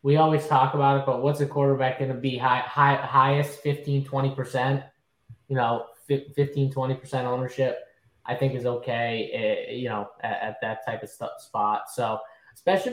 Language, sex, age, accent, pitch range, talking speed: English, male, 10-29, American, 125-150 Hz, 175 wpm